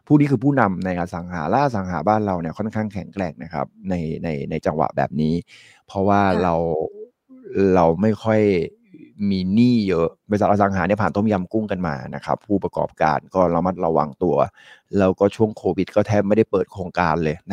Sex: male